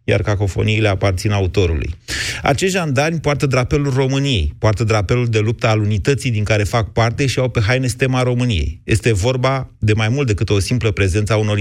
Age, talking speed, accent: 30-49, 185 wpm, native